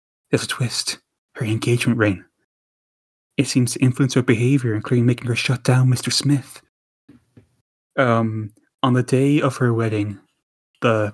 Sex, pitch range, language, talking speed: male, 110-130 Hz, English, 145 wpm